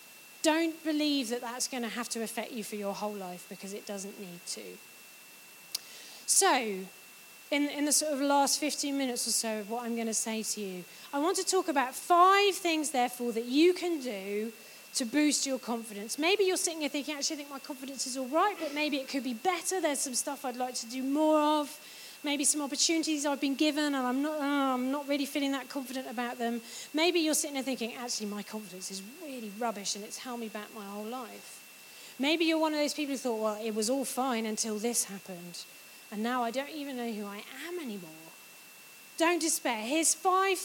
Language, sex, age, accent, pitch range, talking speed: English, female, 30-49, British, 225-300 Hz, 220 wpm